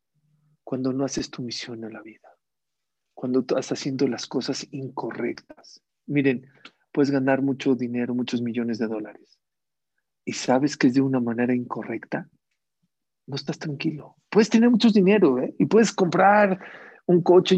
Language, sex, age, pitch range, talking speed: English, male, 50-69, 130-170 Hz, 150 wpm